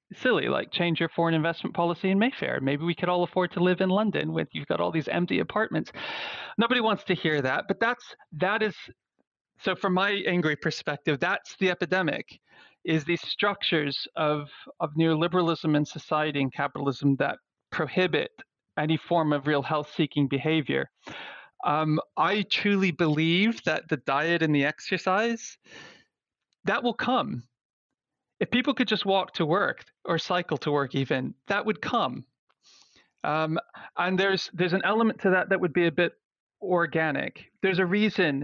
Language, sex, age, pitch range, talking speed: English, male, 40-59, 150-190 Hz, 165 wpm